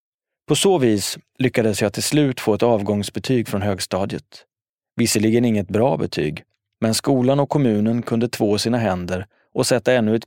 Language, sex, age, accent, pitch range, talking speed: English, male, 30-49, Swedish, 105-130 Hz, 165 wpm